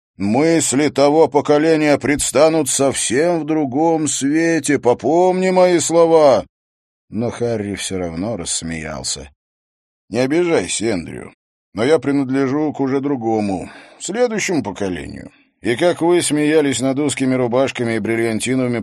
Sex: male